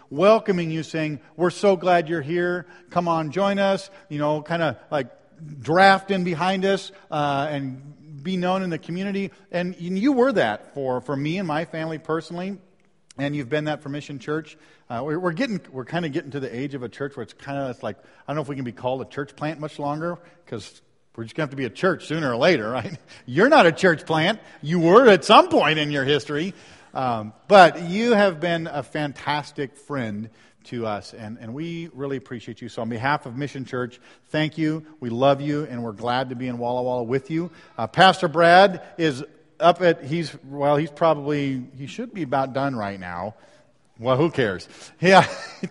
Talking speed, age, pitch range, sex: 215 wpm, 40-59, 140-180 Hz, male